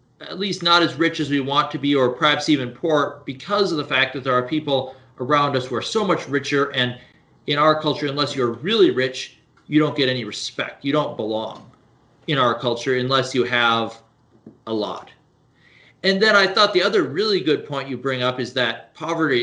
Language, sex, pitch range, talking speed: English, male, 125-160 Hz, 210 wpm